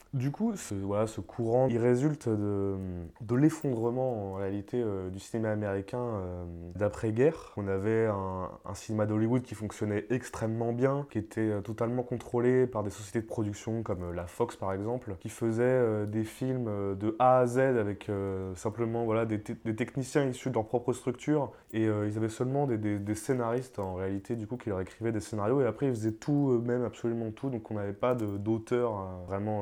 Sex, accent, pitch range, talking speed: male, French, 105-120 Hz, 200 wpm